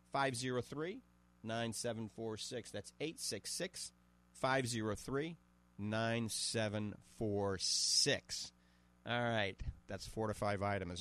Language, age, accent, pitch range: English, 40-59, American, 105-140 Hz